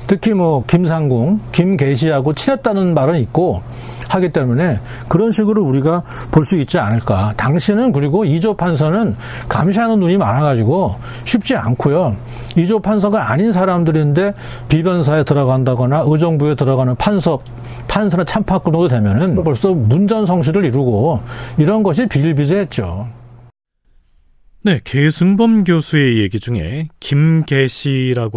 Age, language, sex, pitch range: 40-59, Korean, male, 120-175 Hz